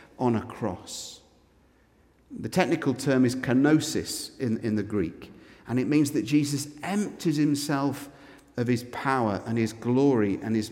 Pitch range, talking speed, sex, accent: 110-140 Hz, 150 wpm, male, British